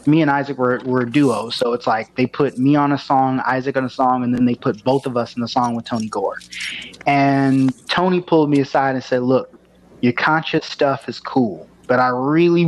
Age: 20-39